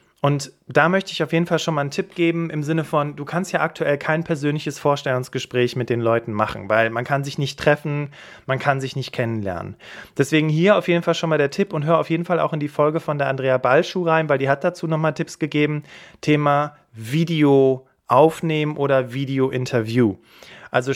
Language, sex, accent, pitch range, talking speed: German, male, German, 135-160 Hz, 210 wpm